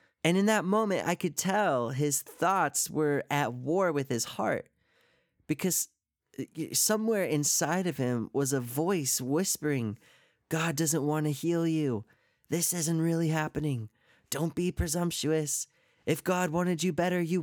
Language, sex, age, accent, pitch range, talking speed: English, male, 20-39, American, 135-180 Hz, 150 wpm